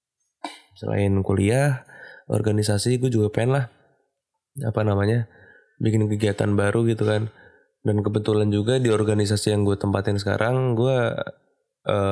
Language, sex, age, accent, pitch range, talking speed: Indonesian, male, 20-39, native, 105-125 Hz, 120 wpm